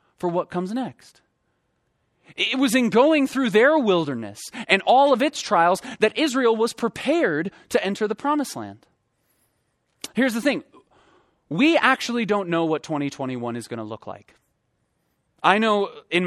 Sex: male